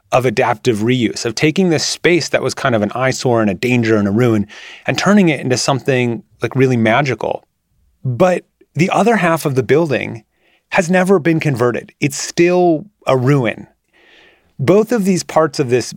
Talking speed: 180 wpm